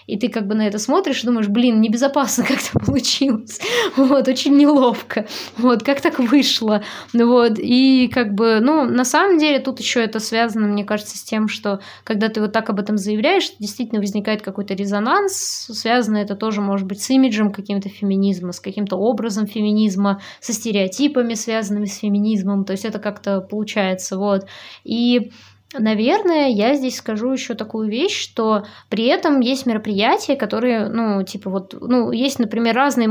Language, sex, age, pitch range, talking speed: Russian, female, 20-39, 205-250 Hz, 170 wpm